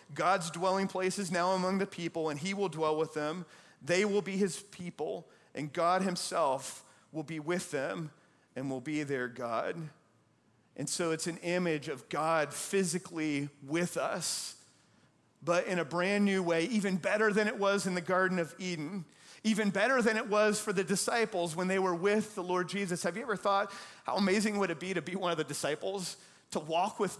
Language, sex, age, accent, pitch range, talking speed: English, male, 40-59, American, 170-210 Hz, 200 wpm